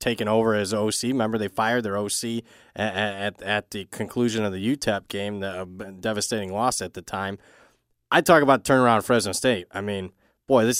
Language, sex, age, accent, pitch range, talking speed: English, male, 20-39, American, 105-130 Hz, 200 wpm